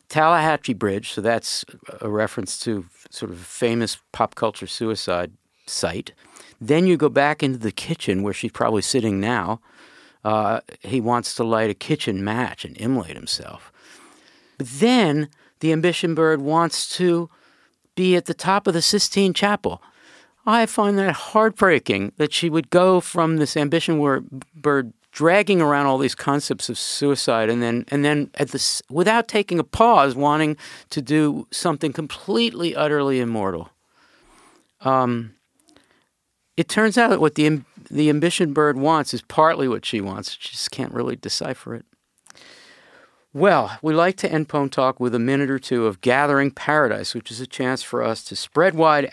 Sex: male